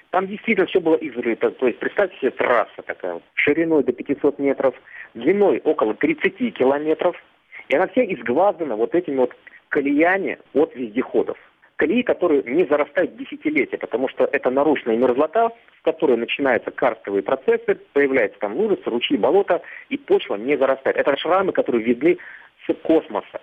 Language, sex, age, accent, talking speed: Russian, male, 40-59, native, 150 wpm